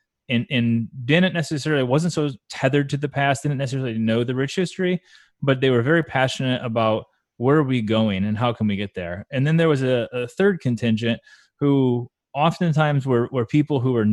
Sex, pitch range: male, 115-140 Hz